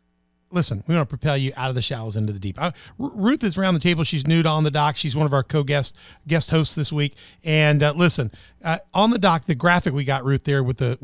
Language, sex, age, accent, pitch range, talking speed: English, male, 40-59, American, 140-180 Hz, 270 wpm